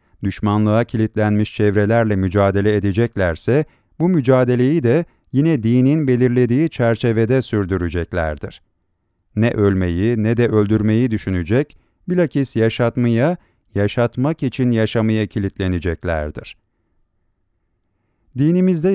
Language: Turkish